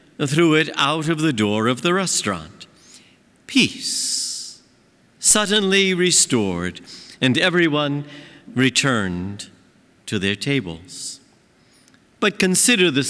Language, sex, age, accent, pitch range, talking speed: English, male, 50-69, American, 150-230 Hz, 95 wpm